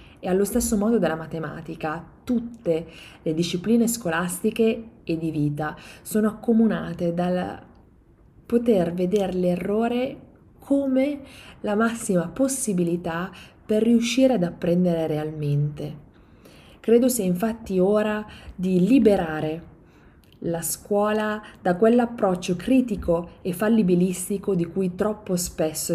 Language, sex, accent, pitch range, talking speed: Italian, female, native, 165-210 Hz, 105 wpm